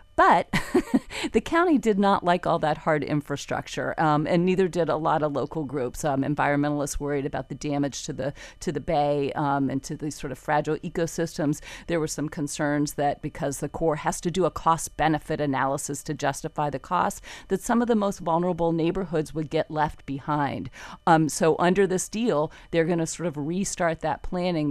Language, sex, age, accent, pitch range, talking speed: English, female, 40-59, American, 145-180 Hz, 195 wpm